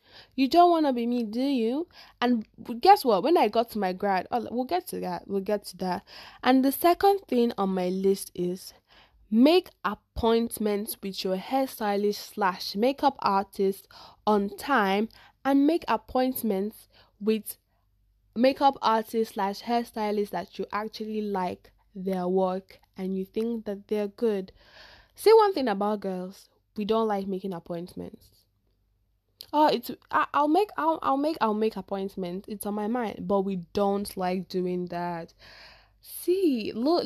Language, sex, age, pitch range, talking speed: English, female, 10-29, 185-255 Hz, 155 wpm